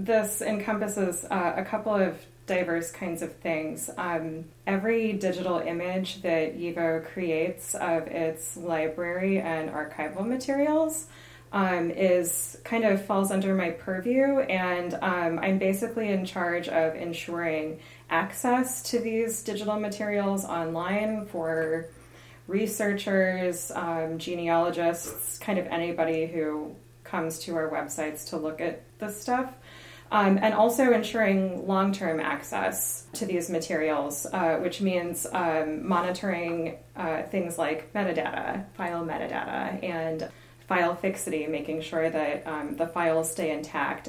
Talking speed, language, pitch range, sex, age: 125 wpm, English, 160-195 Hz, female, 20-39